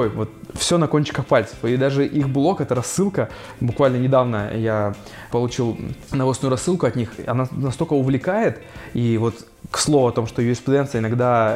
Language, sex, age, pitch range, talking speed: Russian, male, 20-39, 120-145 Hz, 160 wpm